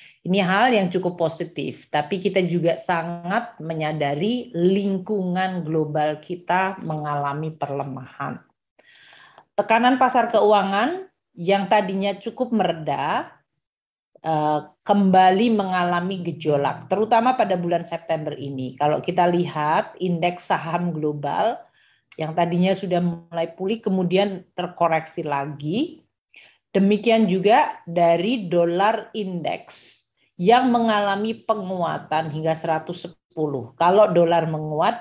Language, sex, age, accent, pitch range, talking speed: Indonesian, female, 40-59, native, 155-195 Hz, 100 wpm